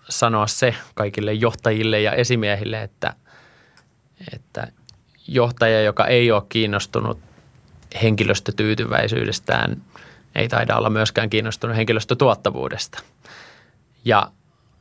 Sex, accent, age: male, native, 20-39